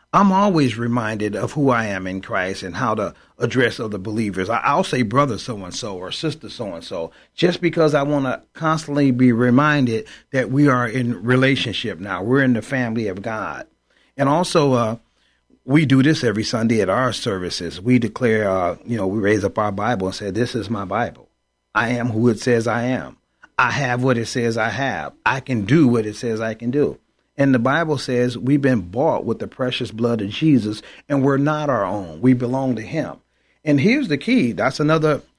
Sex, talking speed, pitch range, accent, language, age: male, 205 wpm, 120-160 Hz, American, English, 40-59